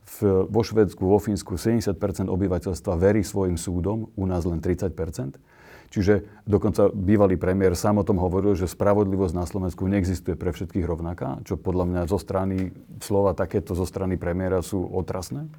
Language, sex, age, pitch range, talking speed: Slovak, male, 40-59, 95-105 Hz, 160 wpm